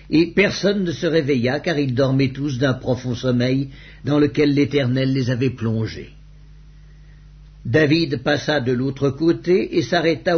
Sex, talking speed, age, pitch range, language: male, 145 wpm, 60-79, 135-160 Hz, English